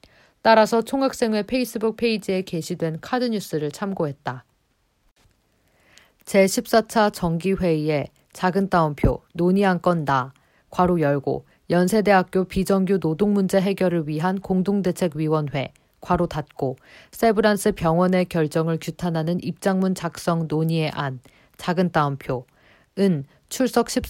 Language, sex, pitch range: Korean, female, 155-200 Hz